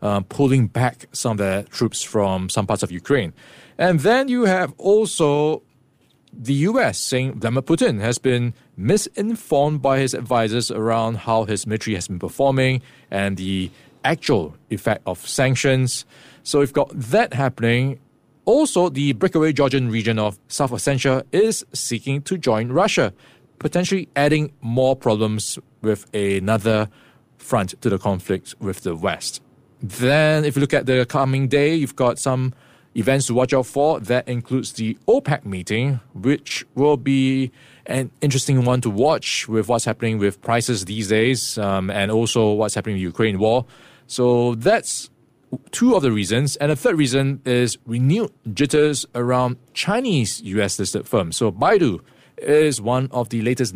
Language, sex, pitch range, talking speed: English, male, 110-140 Hz, 155 wpm